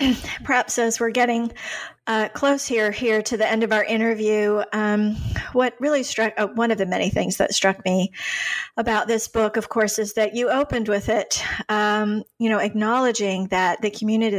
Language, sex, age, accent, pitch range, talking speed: English, female, 40-59, American, 195-230 Hz, 190 wpm